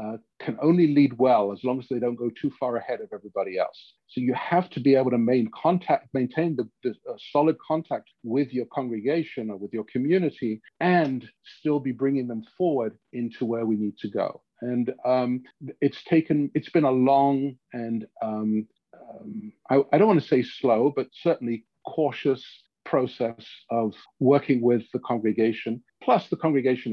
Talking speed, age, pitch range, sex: 180 wpm, 50-69, 115-140 Hz, male